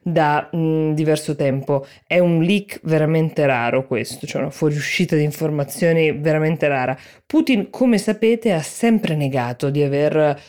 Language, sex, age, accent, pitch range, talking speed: Italian, female, 20-39, native, 145-190 Hz, 145 wpm